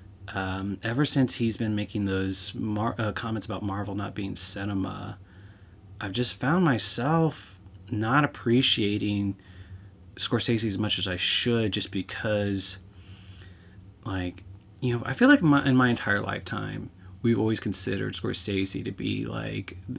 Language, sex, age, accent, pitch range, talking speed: English, male, 30-49, American, 95-125 Hz, 135 wpm